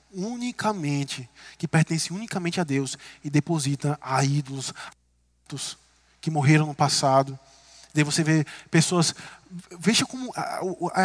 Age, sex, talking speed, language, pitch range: 20-39, male, 130 wpm, Portuguese, 140-180 Hz